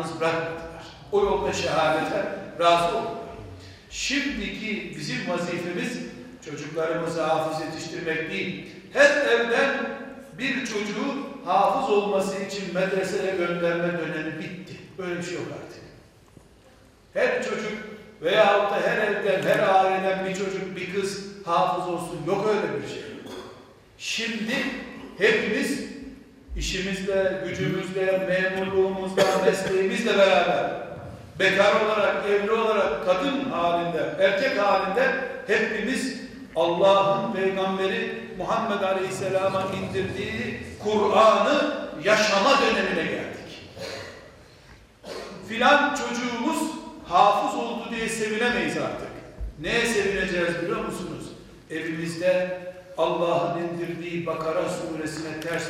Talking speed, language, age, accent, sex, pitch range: 95 wpm, Turkish, 60-79, native, male, 170-215 Hz